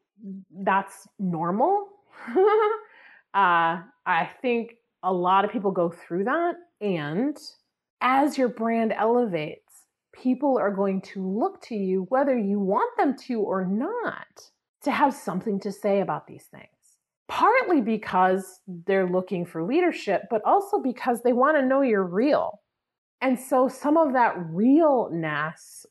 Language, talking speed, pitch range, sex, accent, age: English, 140 wpm, 185-275 Hz, female, American, 30-49